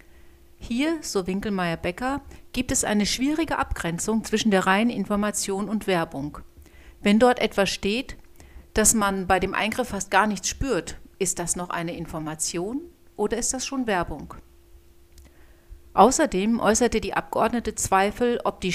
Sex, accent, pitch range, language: female, German, 170-220 Hz, German